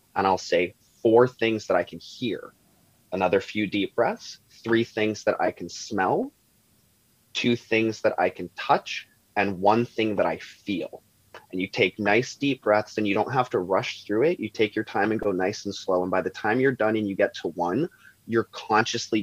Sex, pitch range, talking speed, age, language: male, 95-110 Hz, 210 wpm, 20-39, English